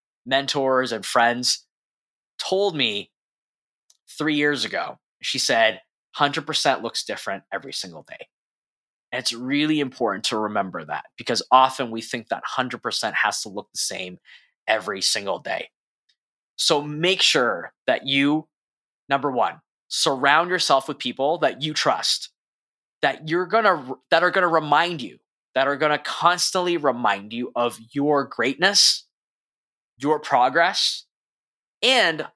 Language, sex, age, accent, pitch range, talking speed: English, male, 20-39, American, 120-155 Hz, 135 wpm